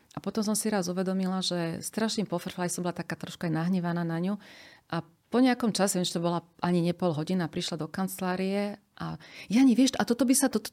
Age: 40-59